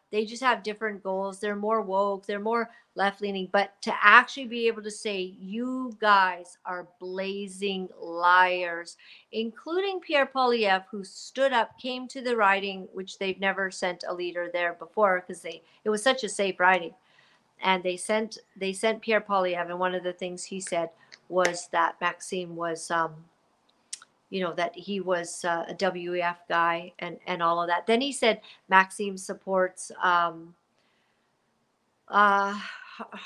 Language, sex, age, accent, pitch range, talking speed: English, female, 50-69, American, 180-215 Hz, 160 wpm